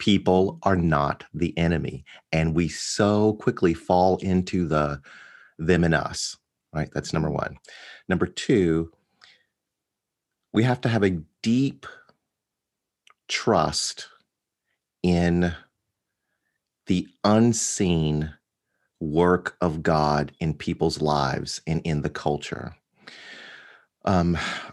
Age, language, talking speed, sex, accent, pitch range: 30-49, English, 100 wpm, male, American, 75-95 Hz